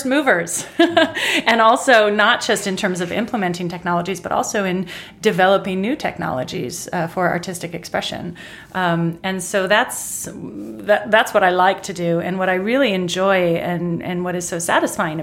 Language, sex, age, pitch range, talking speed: Swedish, female, 30-49, 170-200 Hz, 165 wpm